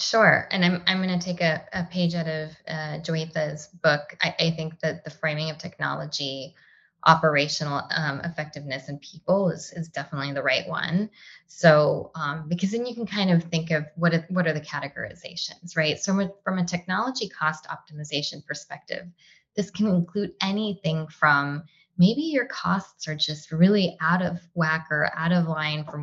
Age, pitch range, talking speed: 20-39, 155-185 Hz, 180 wpm